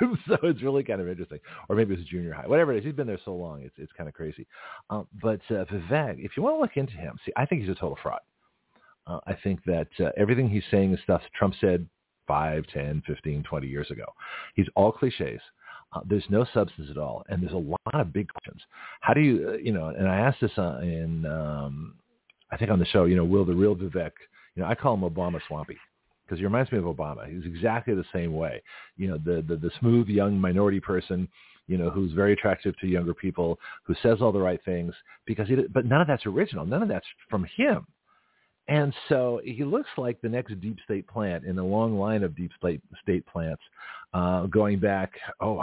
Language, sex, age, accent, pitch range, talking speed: English, male, 40-59, American, 85-110 Hz, 235 wpm